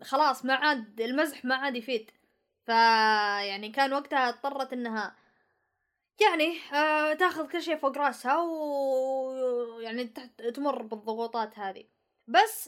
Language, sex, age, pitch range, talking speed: Arabic, female, 20-39, 230-290 Hz, 120 wpm